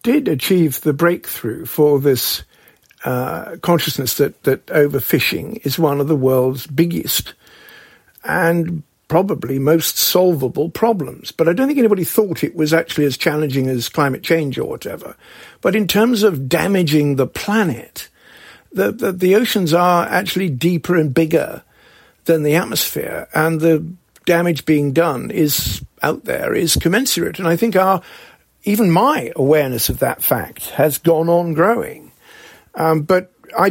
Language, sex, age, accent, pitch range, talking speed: English, male, 50-69, British, 145-180 Hz, 150 wpm